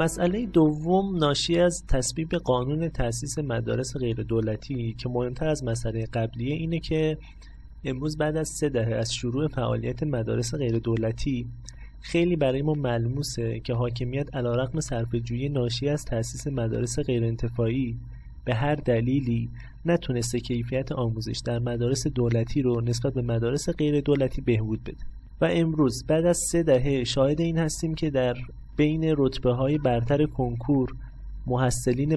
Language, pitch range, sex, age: Persian, 115-145 Hz, male, 30-49